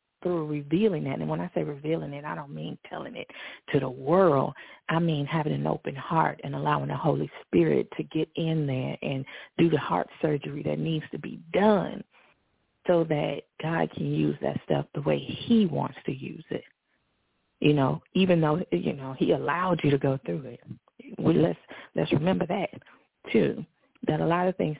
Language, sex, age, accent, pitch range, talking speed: English, female, 40-59, American, 140-175 Hz, 195 wpm